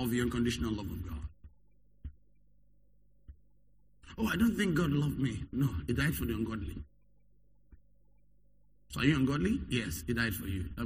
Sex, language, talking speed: male, English, 160 wpm